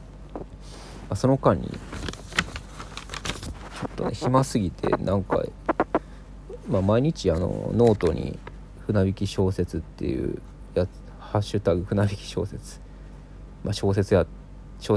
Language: Japanese